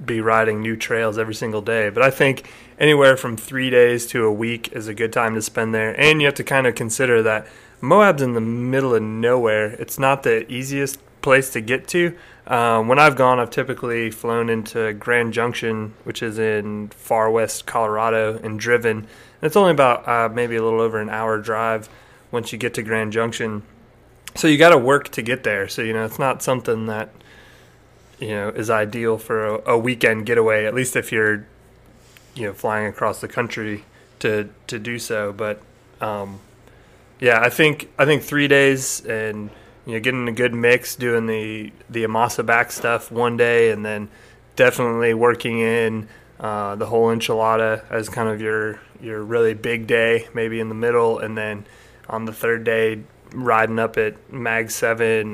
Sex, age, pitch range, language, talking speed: male, 30-49, 110-120 Hz, English, 190 wpm